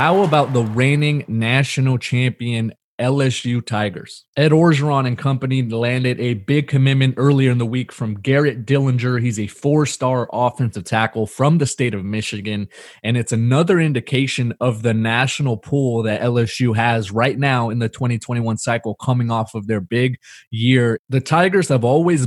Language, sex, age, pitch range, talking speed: English, male, 20-39, 115-135 Hz, 160 wpm